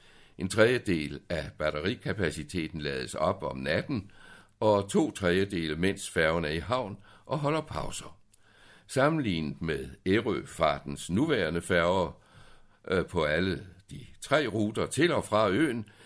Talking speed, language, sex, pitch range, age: 125 wpm, Danish, male, 85-110 Hz, 60-79